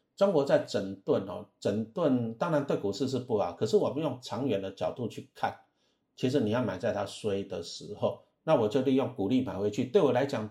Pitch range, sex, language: 110-140 Hz, male, Chinese